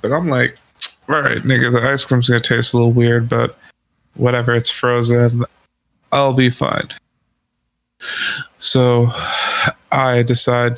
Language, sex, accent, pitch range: English, male, American, 120-150 Hz